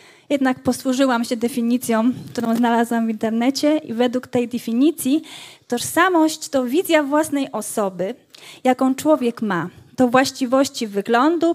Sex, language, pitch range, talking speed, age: female, Polish, 225-285 Hz, 120 wpm, 20-39